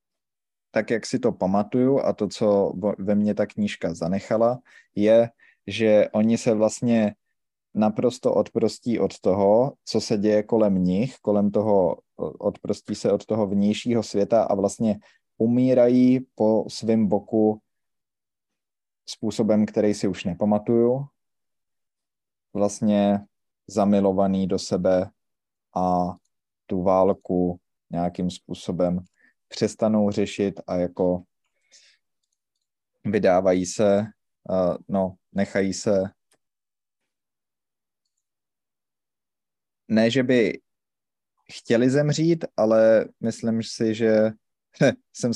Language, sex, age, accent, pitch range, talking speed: Czech, male, 20-39, native, 100-120 Hz, 100 wpm